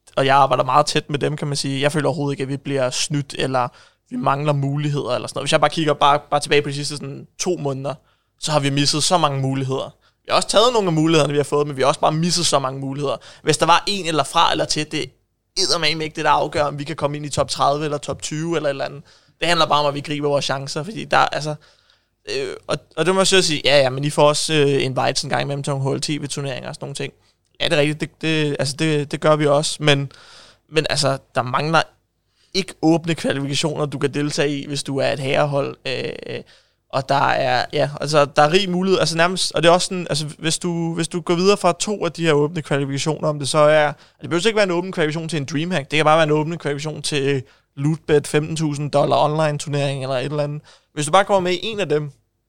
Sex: male